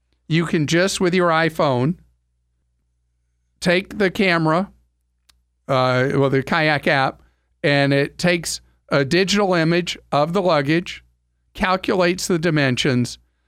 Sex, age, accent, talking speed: male, 50-69, American, 115 wpm